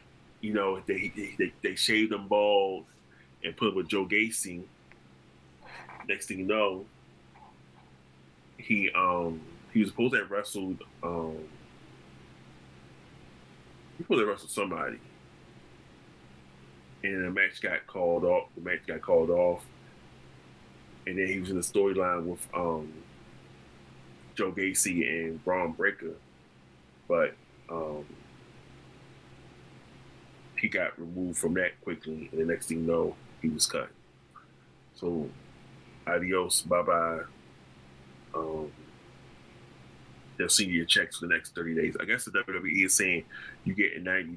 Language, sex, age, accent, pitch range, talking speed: English, male, 20-39, American, 65-95 Hz, 135 wpm